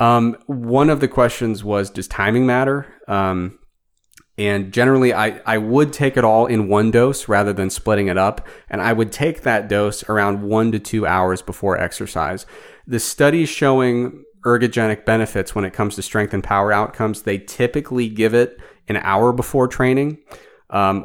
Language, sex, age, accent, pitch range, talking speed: English, male, 30-49, American, 100-120 Hz, 175 wpm